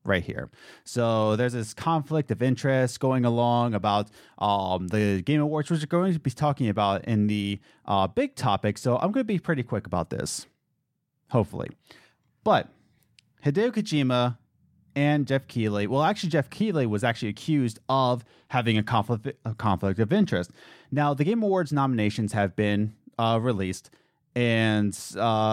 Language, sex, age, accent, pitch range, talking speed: English, male, 30-49, American, 110-150 Hz, 160 wpm